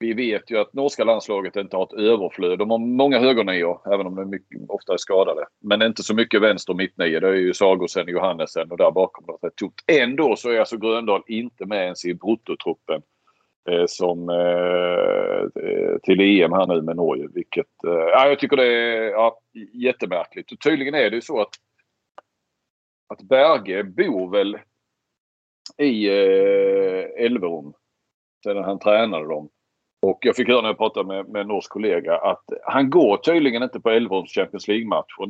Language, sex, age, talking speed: Swedish, male, 40-59, 185 wpm